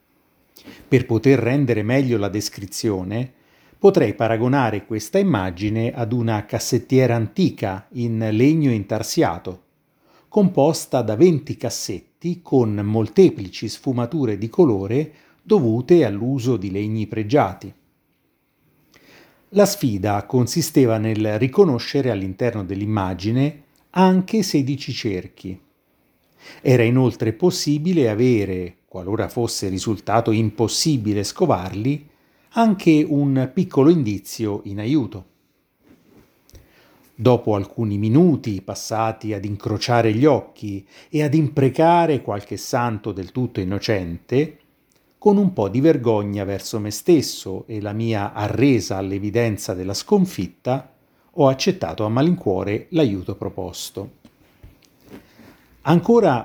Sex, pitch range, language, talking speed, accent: male, 105-145 Hz, Italian, 100 wpm, native